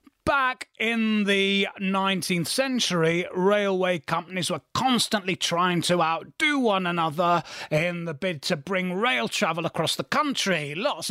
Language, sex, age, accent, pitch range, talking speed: English, male, 30-49, British, 175-210 Hz, 135 wpm